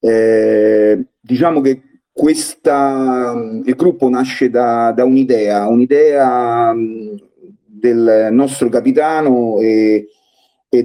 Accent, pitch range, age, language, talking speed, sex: native, 110-135 Hz, 30-49, Italian, 90 wpm, male